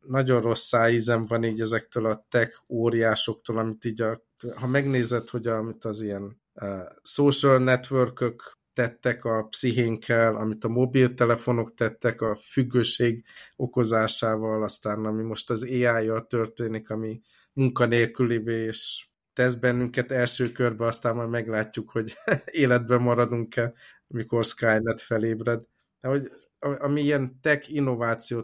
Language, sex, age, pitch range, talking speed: Hungarian, male, 50-69, 110-120 Hz, 125 wpm